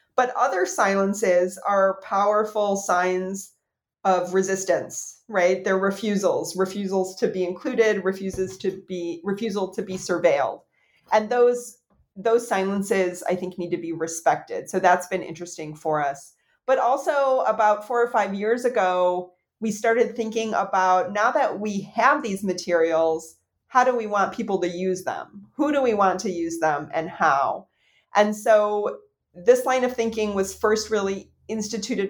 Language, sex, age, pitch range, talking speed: English, female, 30-49, 175-215 Hz, 155 wpm